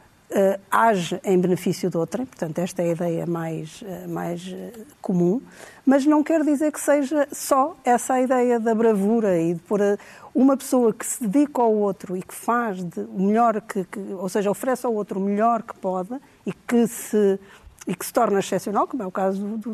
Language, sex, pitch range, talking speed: Portuguese, female, 195-240 Hz, 190 wpm